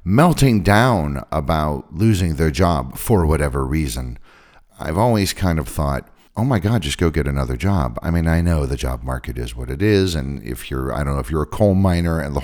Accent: American